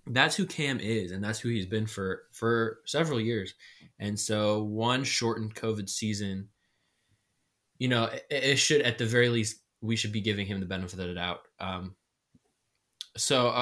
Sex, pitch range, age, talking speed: male, 100-115 Hz, 20-39, 175 wpm